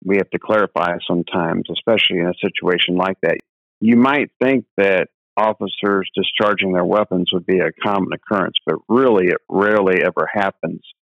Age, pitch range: 50-69, 90-105 Hz